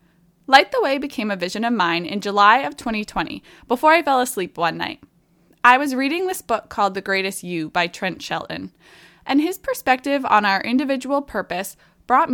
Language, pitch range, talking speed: English, 180-265 Hz, 185 wpm